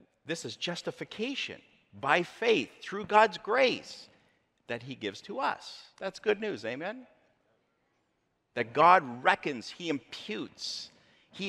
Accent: American